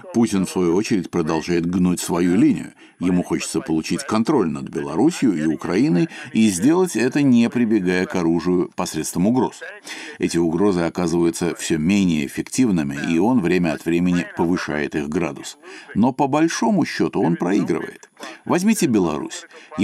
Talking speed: 140 wpm